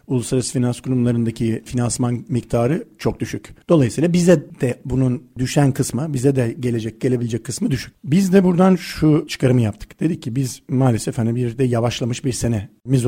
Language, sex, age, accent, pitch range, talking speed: Turkish, male, 50-69, native, 120-150 Hz, 160 wpm